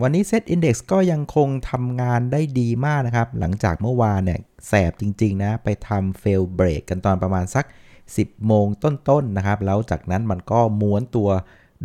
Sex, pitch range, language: male, 95-120 Hz, Thai